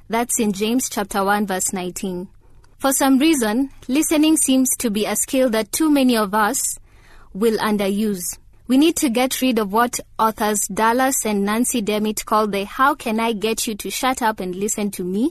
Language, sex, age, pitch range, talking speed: English, female, 20-39, 205-250 Hz, 150 wpm